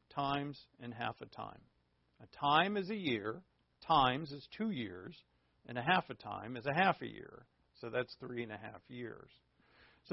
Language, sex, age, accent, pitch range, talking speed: English, male, 50-69, American, 105-175 Hz, 190 wpm